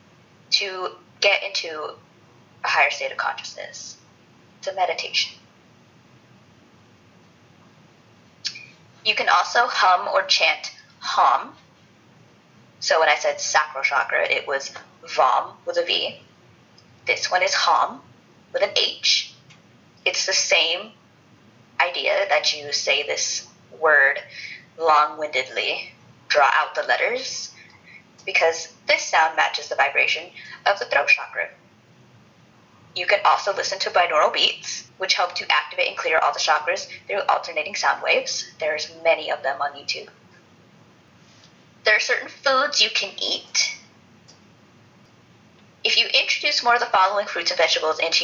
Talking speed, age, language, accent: 130 wpm, 20-39, English, American